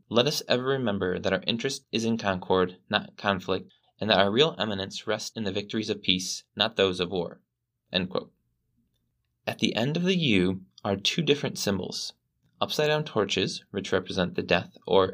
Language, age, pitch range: English, 20-39, 90-120 Hz